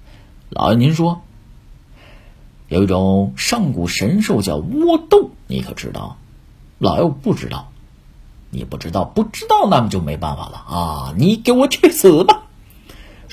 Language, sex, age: Chinese, male, 50-69